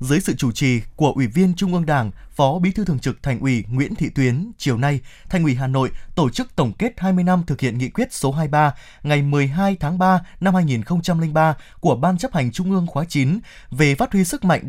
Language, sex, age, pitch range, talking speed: Vietnamese, male, 20-39, 135-185 Hz, 235 wpm